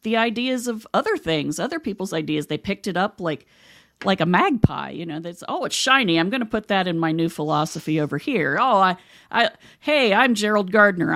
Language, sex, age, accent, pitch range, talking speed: English, female, 40-59, American, 160-225 Hz, 210 wpm